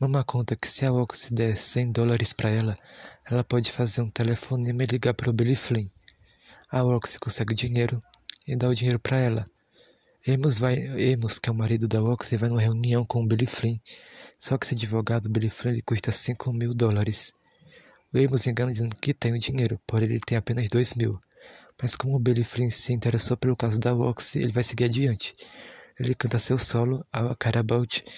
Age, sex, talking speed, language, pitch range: 20-39, male, 200 wpm, Portuguese, 115-125 Hz